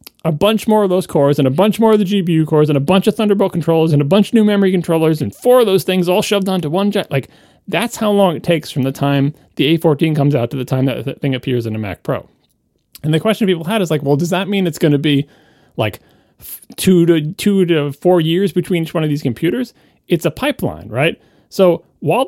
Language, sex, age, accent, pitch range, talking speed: English, male, 30-49, American, 130-185 Hz, 265 wpm